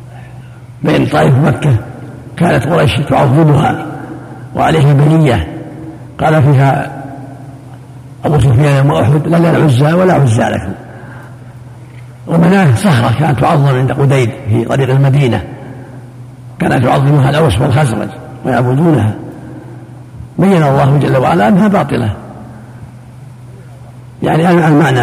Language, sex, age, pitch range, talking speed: Arabic, male, 60-79, 125-155 Hz, 100 wpm